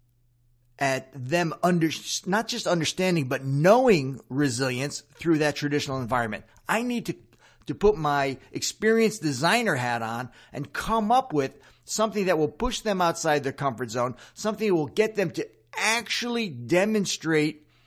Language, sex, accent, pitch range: English, male, American, 125-195 Hz